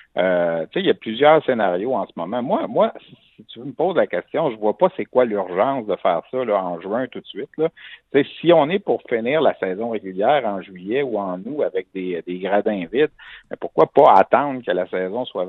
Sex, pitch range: male, 105-150 Hz